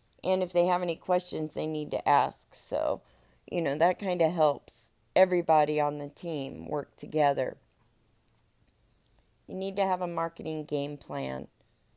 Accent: American